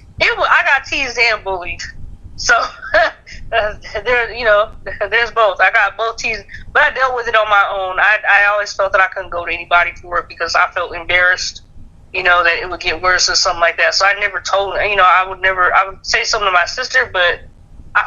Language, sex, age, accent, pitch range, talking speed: English, female, 20-39, American, 175-215 Hz, 235 wpm